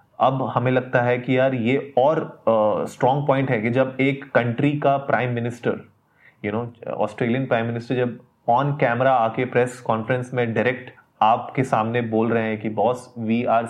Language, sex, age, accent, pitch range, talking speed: Hindi, male, 20-39, native, 115-130 Hz, 180 wpm